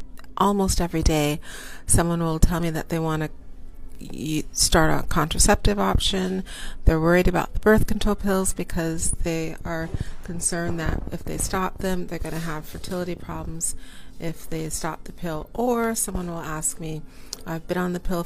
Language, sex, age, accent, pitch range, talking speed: English, female, 40-59, American, 150-185 Hz, 170 wpm